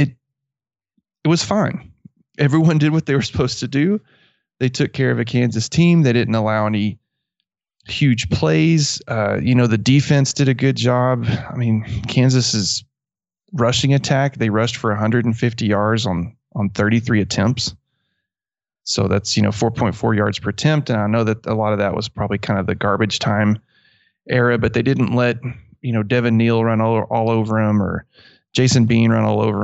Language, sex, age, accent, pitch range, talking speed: English, male, 30-49, American, 105-125 Hz, 185 wpm